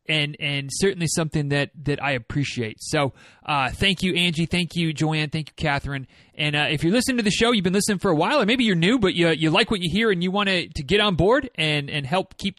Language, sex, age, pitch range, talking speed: English, male, 30-49, 145-195 Hz, 260 wpm